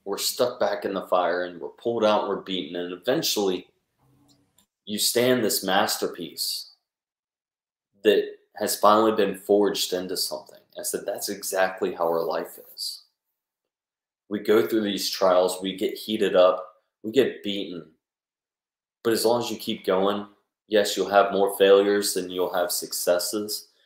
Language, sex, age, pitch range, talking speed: English, male, 20-39, 95-120 Hz, 155 wpm